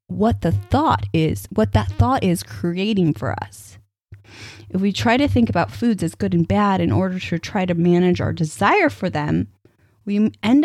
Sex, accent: female, American